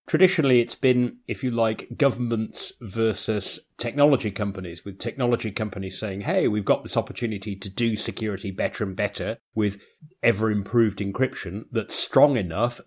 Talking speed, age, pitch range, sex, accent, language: 150 wpm, 30-49, 105-130 Hz, male, British, English